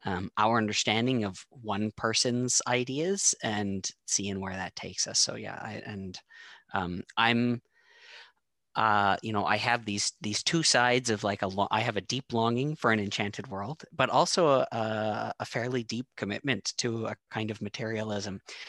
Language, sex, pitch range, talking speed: English, male, 100-120 Hz, 170 wpm